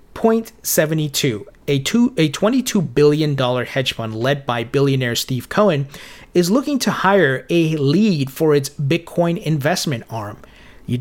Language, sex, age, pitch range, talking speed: English, male, 30-49, 130-175 Hz, 135 wpm